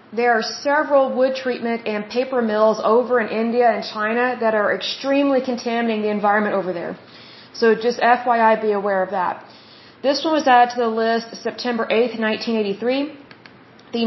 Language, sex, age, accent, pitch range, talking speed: Bengali, female, 30-49, American, 225-255 Hz, 165 wpm